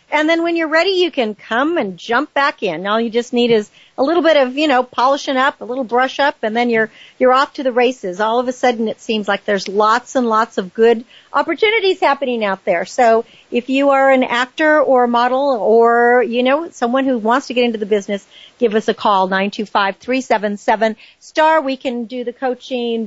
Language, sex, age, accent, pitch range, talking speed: English, female, 50-69, American, 225-280 Hz, 220 wpm